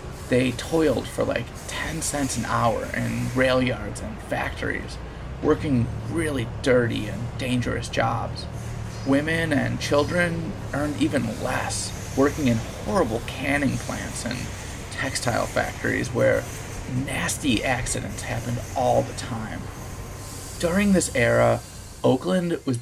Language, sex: English, male